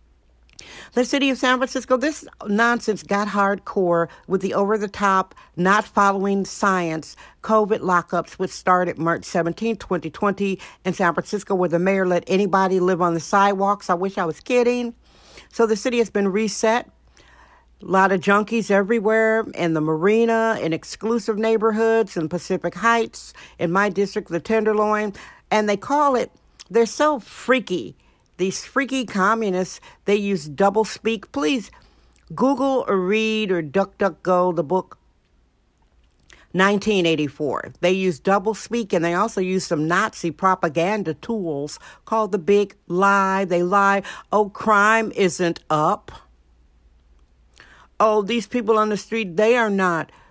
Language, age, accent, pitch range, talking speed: English, 50-69, American, 175-220 Hz, 140 wpm